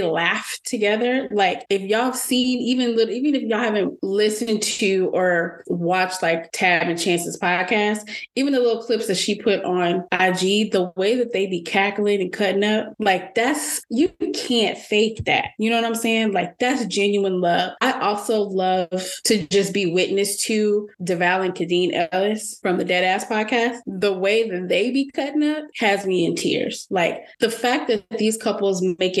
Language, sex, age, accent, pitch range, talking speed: English, female, 20-39, American, 180-220 Hz, 180 wpm